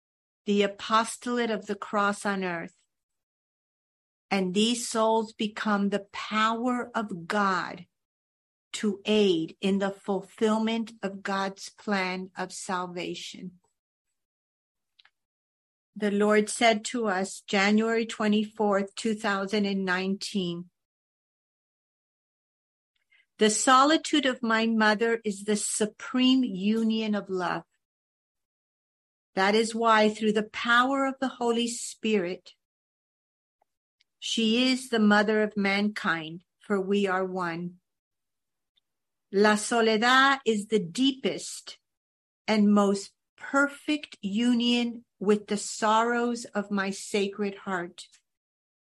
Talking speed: 100 wpm